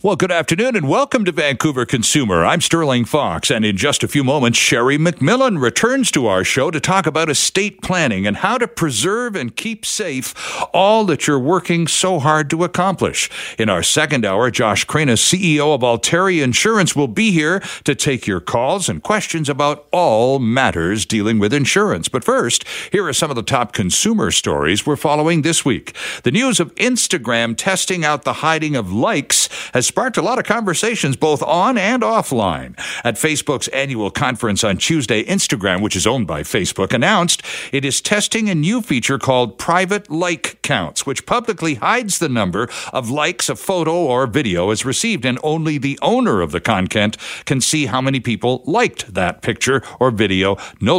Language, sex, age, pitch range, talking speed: English, male, 60-79, 125-185 Hz, 185 wpm